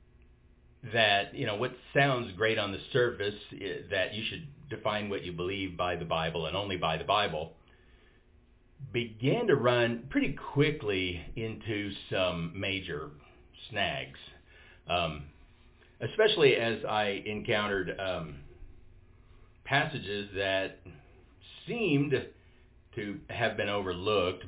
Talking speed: 115 wpm